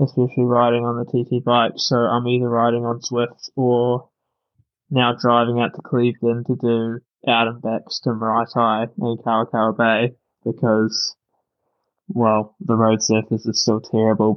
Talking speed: 150 wpm